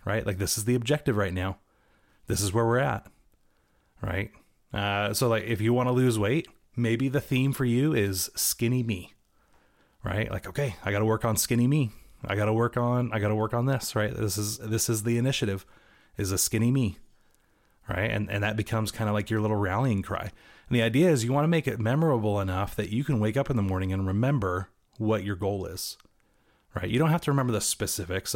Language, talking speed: English, 230 wpm